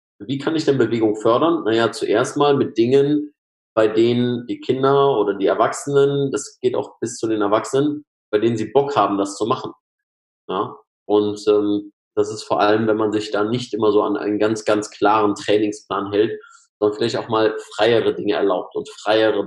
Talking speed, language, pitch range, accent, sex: 195 wpm, German, 105-135 Hz, German, male